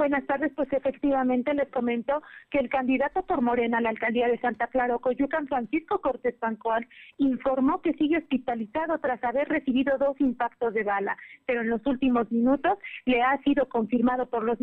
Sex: female